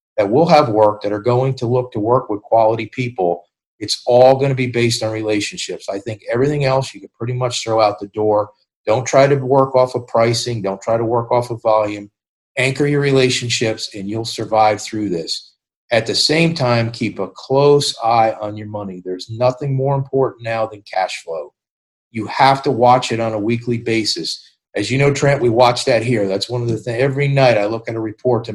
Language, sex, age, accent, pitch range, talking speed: English, male, 40-59, American, 110-130 Hz, 220 wpm